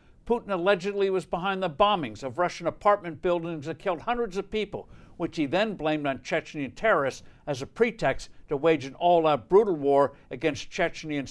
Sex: male